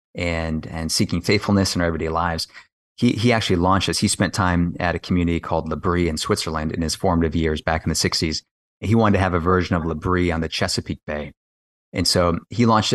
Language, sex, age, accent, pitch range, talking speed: English, male, 30-49, American, 85-105 Hz, 220 wpm